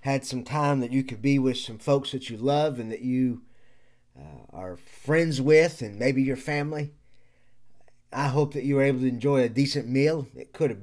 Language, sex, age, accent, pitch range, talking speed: English, male, 30-49, American, 120-145 Hz, 210 wpm